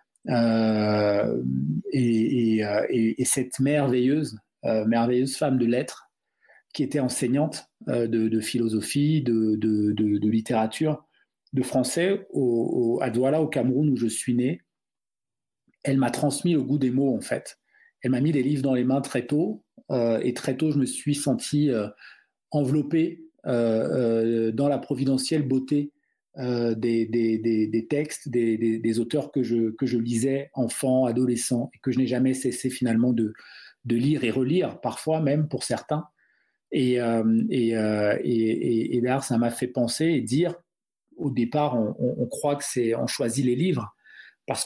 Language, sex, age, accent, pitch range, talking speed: French, male, 40-59, French, 115-140 Hz, 170 wpm